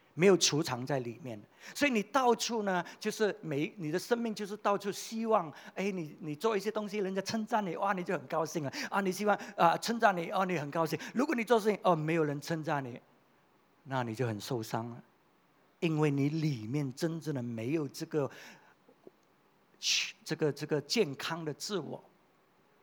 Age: 50-69